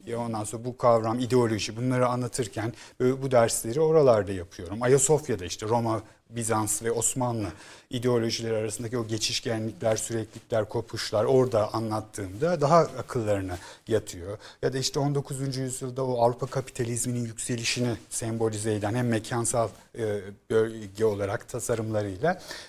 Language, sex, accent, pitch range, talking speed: Turkish, male, native, 110-140 Hz, 115 wpm